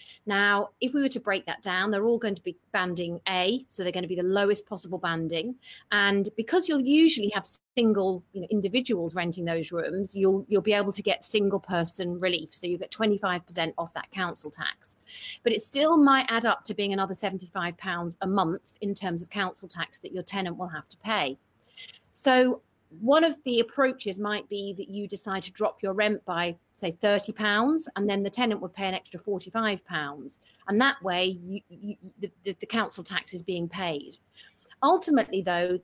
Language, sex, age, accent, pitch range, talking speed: English, female, 40-59, British, 180-220 Hz, 195 wpm